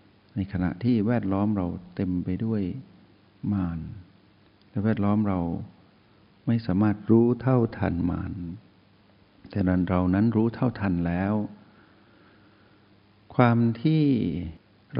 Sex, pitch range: male, 95-110 Hz